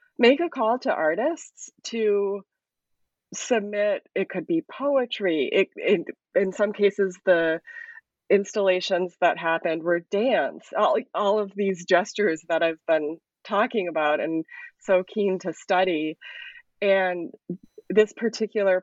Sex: female